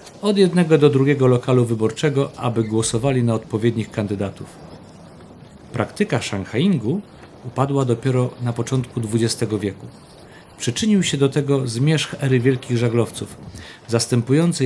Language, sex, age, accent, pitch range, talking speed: Polish, male, 50-69, native, 110-145 Hz, 115 wpm